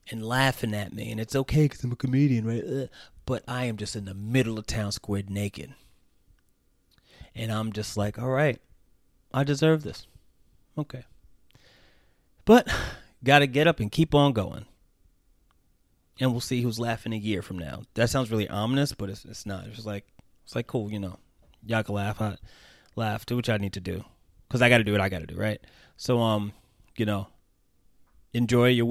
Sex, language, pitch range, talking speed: male, English, 100-125 Hz, 195 wpm